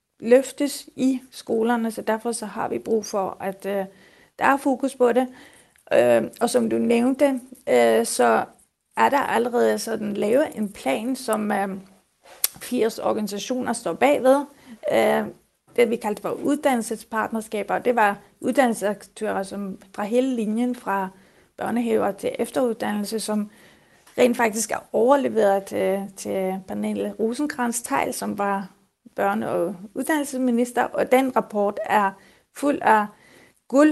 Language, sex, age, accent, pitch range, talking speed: Danish, female, 30-49, native, 200-245 Hz, 125 wpm